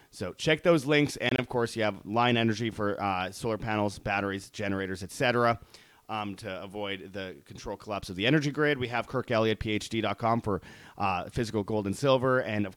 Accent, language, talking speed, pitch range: American, English, 195 wpm, 100-130 Hz